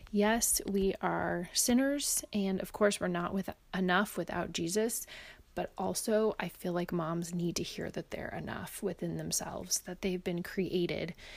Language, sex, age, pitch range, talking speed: English, female, 30-49, 175-215 Hz, 160 wpm